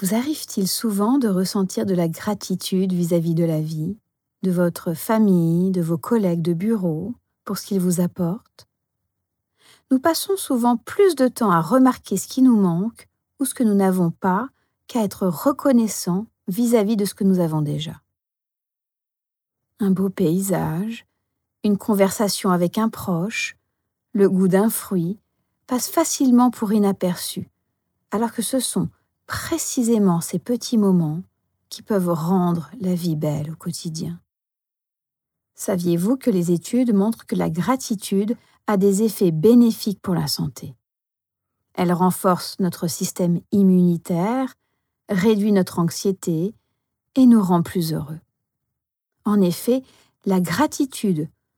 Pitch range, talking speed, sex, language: 175-225 Hz, 135 wpm, female, French